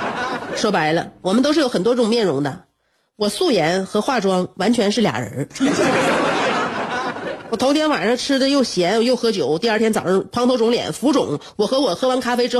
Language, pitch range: Chinese, 215-290 Hz